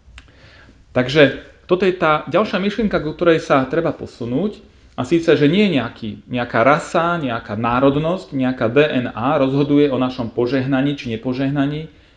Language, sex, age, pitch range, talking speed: Slovak, male, 40-59, 95-145 Hz, 140 wpm